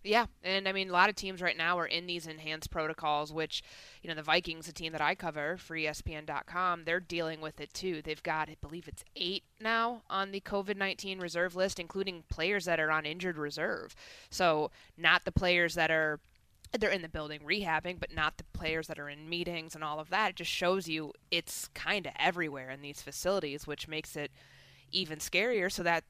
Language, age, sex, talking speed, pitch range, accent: English, 20-39, female, 210 wpm, 155-190 Hz, American